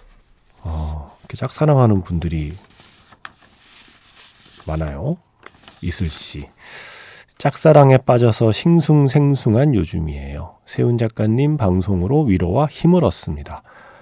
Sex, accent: male, native